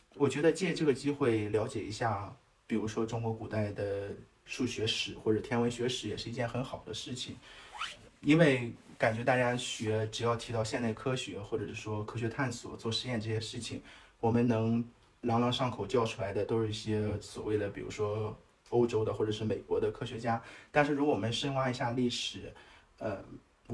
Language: Chinese